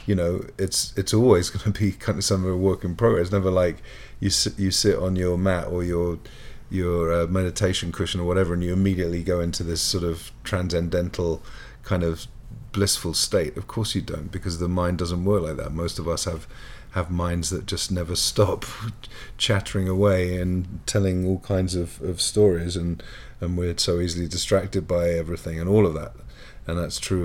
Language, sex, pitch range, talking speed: English, male, 85-100 Hz, 205 wpm